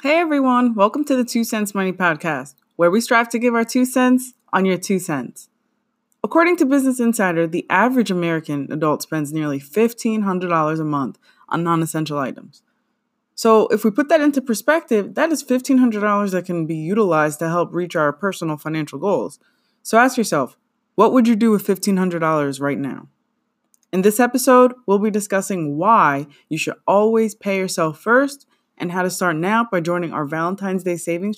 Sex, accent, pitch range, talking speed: female, American, 165-235 Hz, 180 wpm